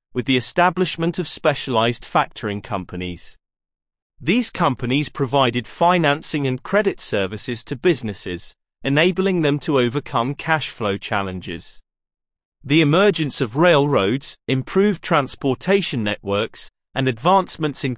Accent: British